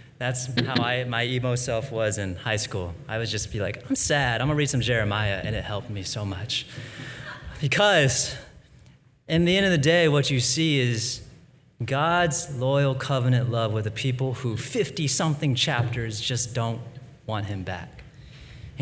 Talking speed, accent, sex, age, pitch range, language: 180 wpm, American, male, 30-49, 110-135 Hz, English